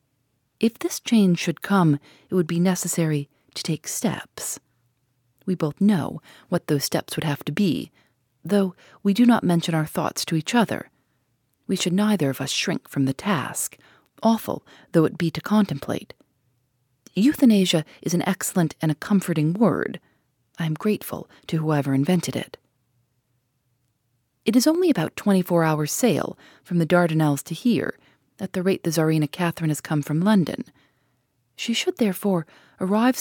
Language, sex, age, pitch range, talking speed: English, female, 40-59, 140-200 Hz, 160 wpm